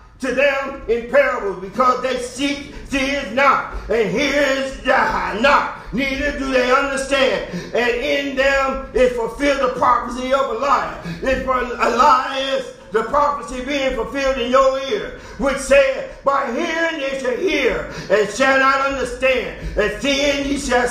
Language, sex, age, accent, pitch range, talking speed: English, male, 50-69, American, 250-280 Hz, 150 wpm